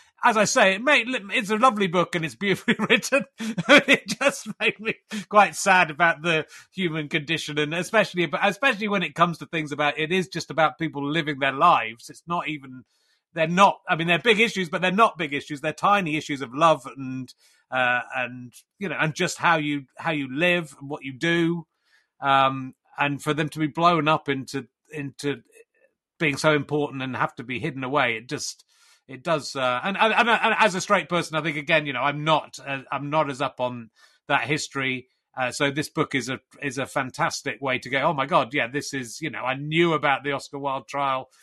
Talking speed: 215 wpm